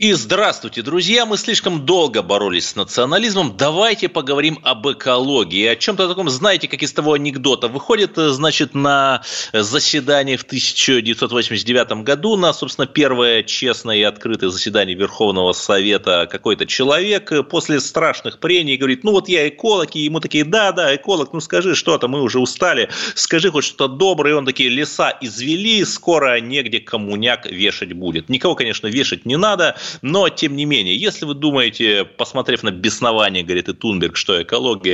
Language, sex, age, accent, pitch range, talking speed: Russian, male, 30-49, native, 120-180 Hz, 160 wpm